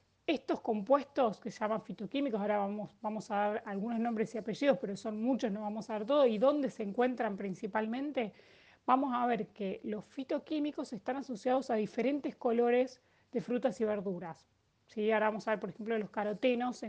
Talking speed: 190 wpm